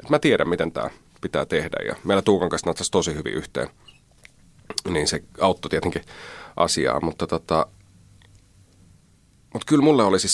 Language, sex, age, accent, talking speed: Finnish, male, 30-49, native, 155 wpm